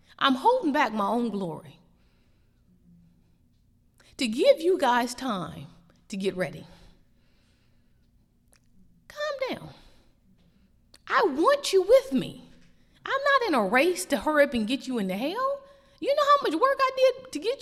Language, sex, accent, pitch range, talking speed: English, female, American, 185-300 Hz, 145 wpm